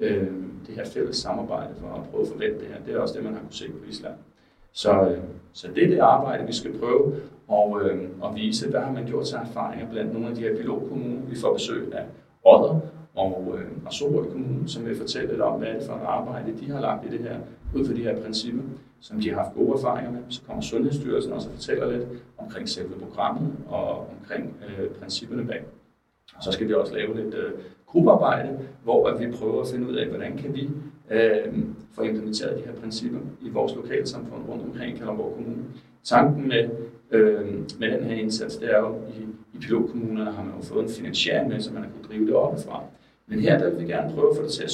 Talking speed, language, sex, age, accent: 225 wpm, Danish, male, 40-59, native